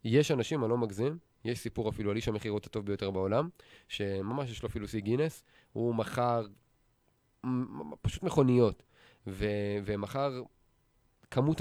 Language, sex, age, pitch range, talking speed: Hebrew, male, 20-39, 105-130 Hz, 140 wpm